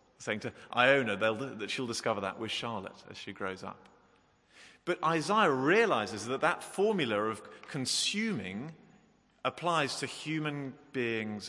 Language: English